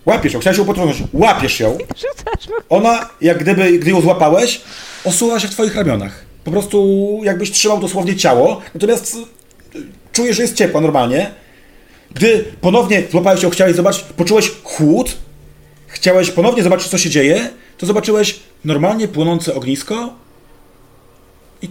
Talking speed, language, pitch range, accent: 140 wpm, Polish, 150-195 Hz, native